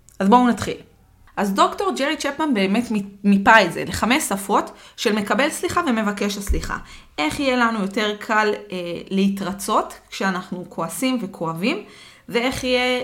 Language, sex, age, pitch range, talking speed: Hebrew, female, 20-39, 200-255 Hz, 140 wpm